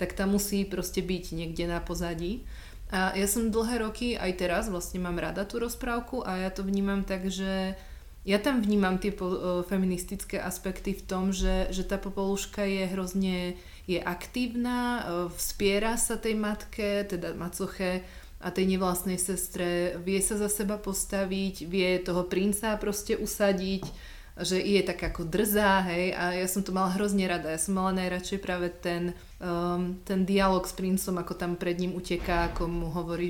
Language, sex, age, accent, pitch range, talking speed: Czech, female, 30-49, native, 180-205 Hz, 175 wpm